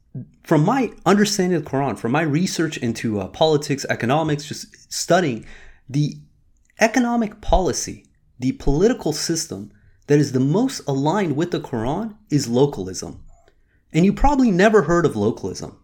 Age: 30-49